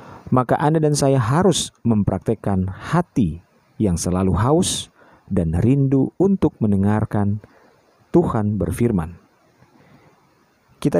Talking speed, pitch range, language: 95 wpm, 95-140 Hz, Indonesian